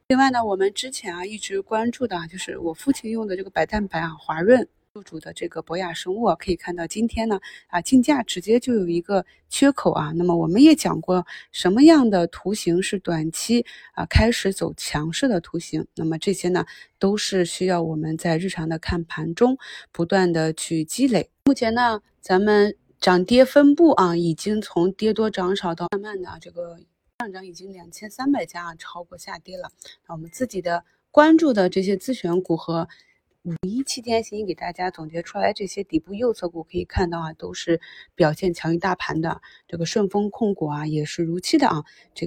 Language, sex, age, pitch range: Chinese, female, 20-39, 170-215 Hz